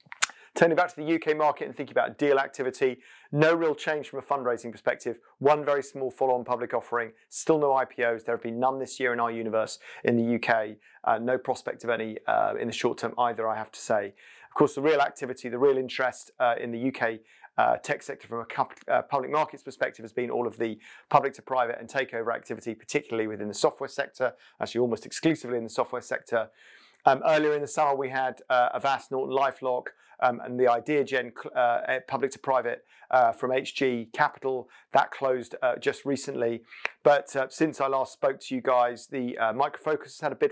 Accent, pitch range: British, 120-140 Hz